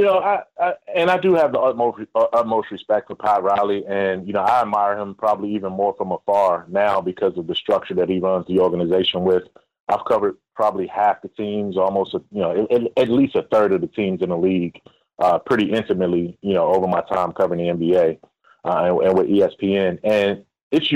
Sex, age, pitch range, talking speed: male, 30-49, 100-120 Hz, 215 wpm